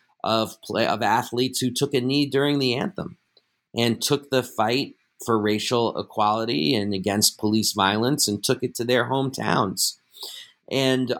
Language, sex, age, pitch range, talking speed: English, male, 40-59, 110-140 Hz, 155 wpm